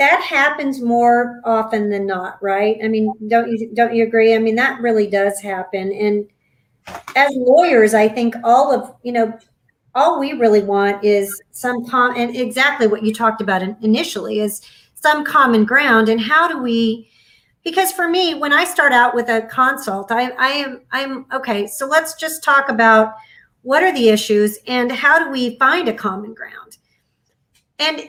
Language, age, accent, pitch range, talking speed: English, 40-59, American, 225-310 Hz, 175 wpm